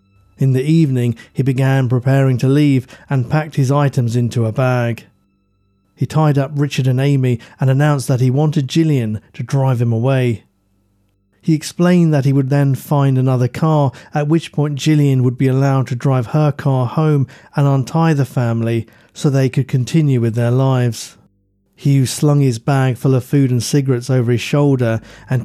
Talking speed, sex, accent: 180 wpm, male, British